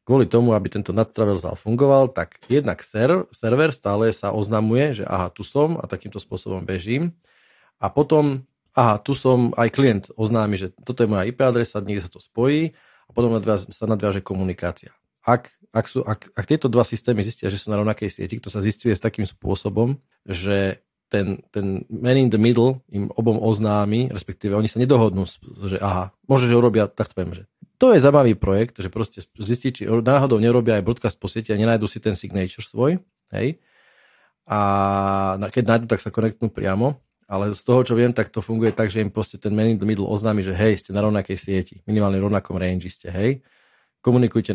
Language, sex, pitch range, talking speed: Slovak, male, 100-120 Hz, 190 wpm